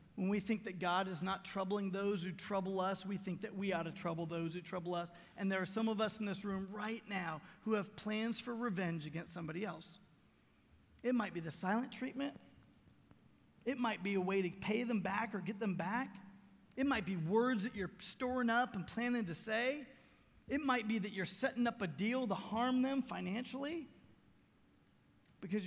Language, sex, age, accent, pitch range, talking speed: English, male, 30-49, American, 185-230 Hz, 205 wpm